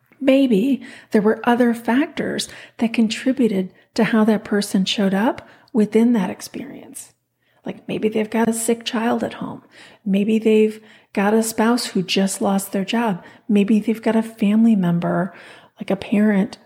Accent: American